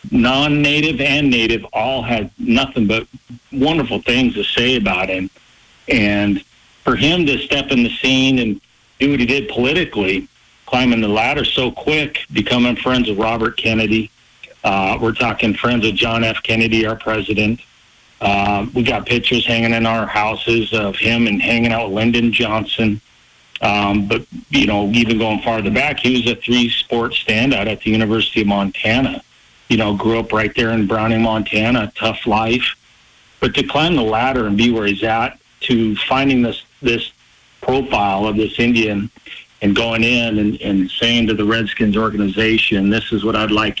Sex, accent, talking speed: male, American, 170 wpm